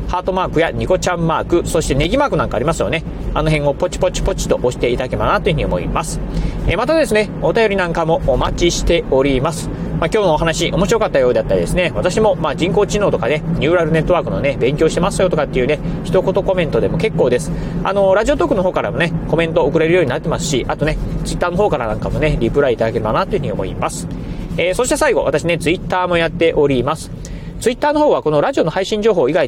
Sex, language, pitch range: male, Japanese, 150-190 Hz